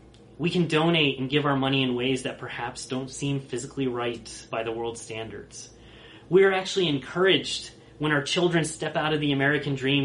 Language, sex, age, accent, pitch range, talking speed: English, male, 30-49, American, 115-150 Hz, 190 wpm